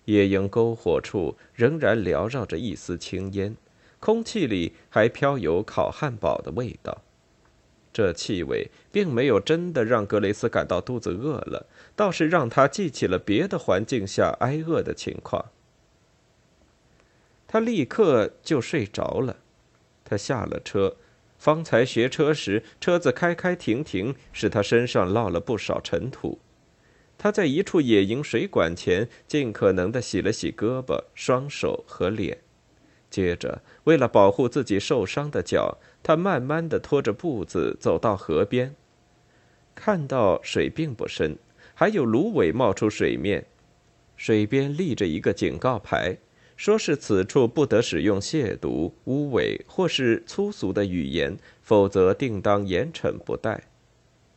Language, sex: Chinese, male